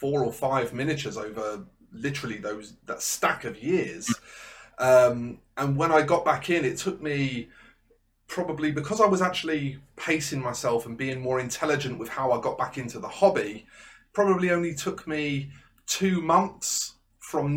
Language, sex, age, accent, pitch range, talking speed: English, male, 30-49, British, 115-155 Hz, 160 wpm